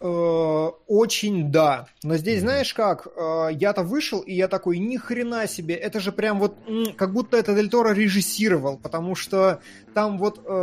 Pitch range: 155-205 Hz